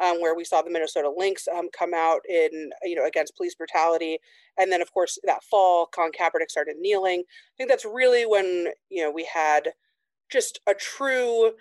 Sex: female